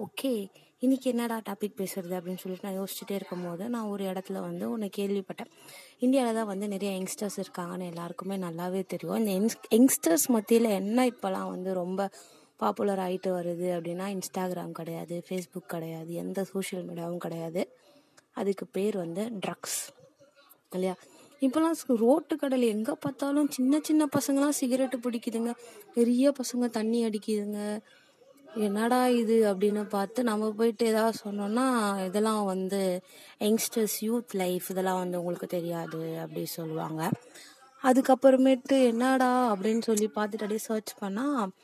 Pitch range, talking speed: 190-250 Hz, 125 wpm